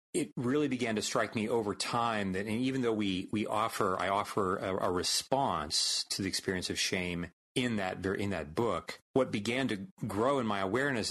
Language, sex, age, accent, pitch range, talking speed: English, male, 30-49, American, 100-145 Hz, 200 wpm